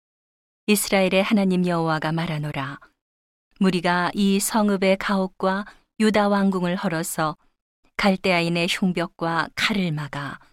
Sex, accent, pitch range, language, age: female, native, 170-205 Hz, Korean, 40-59